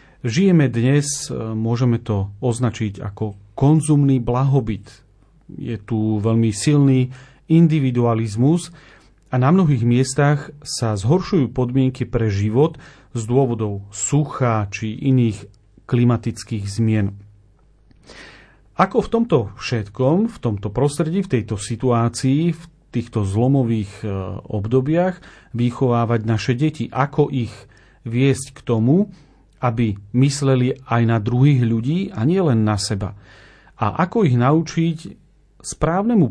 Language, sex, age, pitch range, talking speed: Slovak, male, 40-59, 110-145 Hz, 110 wpm